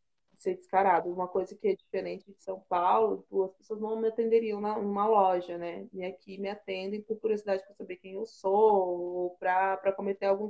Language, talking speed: Portuguese, 195 wpm